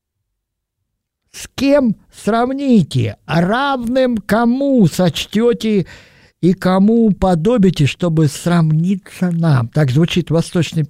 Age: 50-69